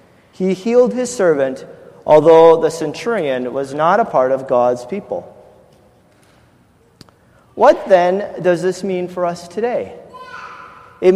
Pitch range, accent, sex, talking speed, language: 160-210 Hz, American, male, 125 wpm, English